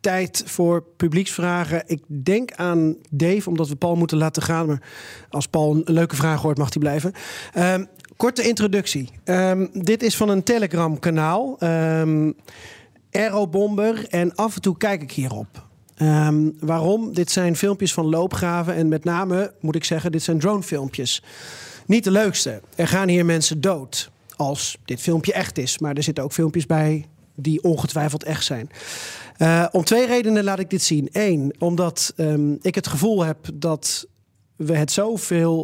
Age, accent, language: 40-59, Dutch, Dutch